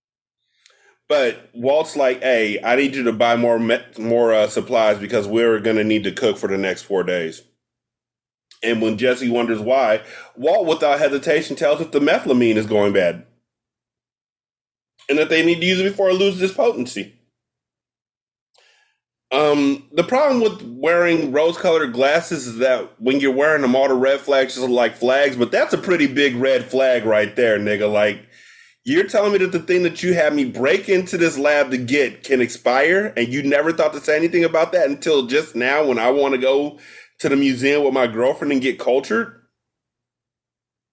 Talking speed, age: 190 wpm, 30-49